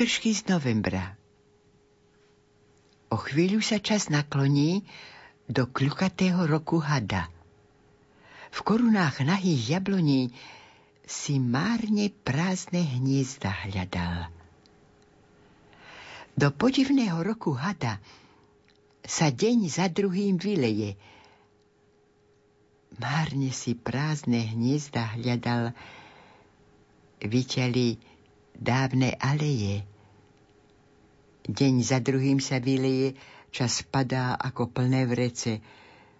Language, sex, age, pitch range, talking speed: Slovak, female, 60-79, 105-145 Hz, 80 wpm